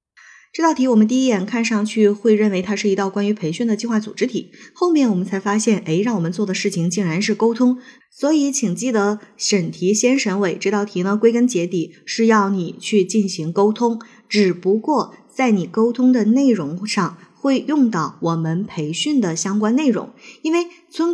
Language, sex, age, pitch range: Chinese, female, 20-39, 185-240 Hz